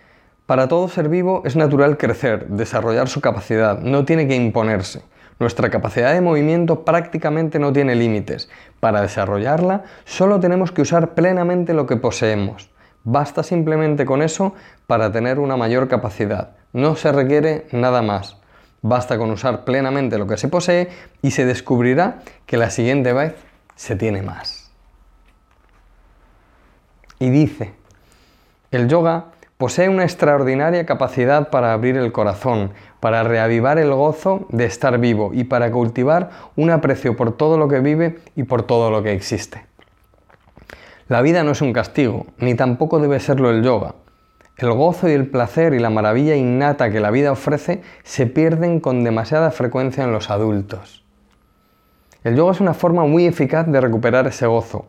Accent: Spanish